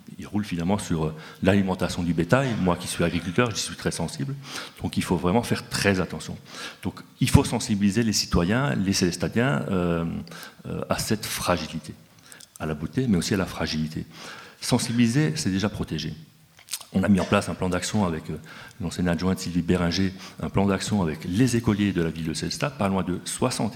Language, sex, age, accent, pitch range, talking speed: French, male, 40-59, French, 85-105 Hz, 190 wpm